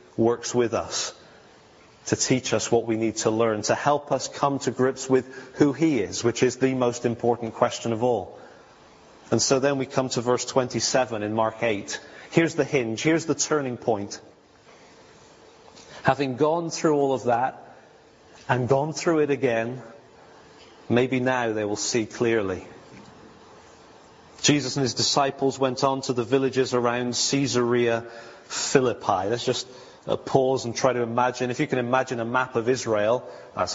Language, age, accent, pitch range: English, 30-49, British, 120-140 Hz